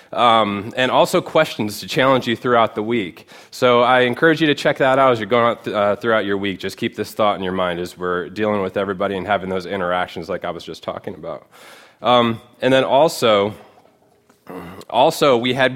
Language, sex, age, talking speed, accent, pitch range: English, male, 20-39, 205 wpm, American, 115-150 Hz